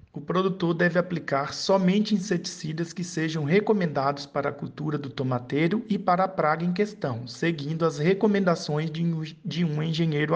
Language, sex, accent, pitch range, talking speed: Portuguese, male, Brazilian, 145-185 Hz, 150 wpm